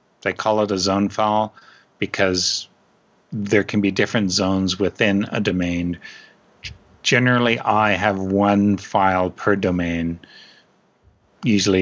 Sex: male